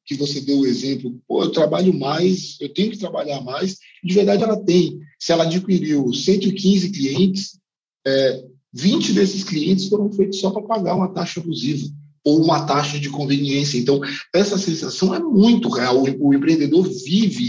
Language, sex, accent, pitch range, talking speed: Portuguese, male, Brazilian, 140-185 Hz, 170 wpm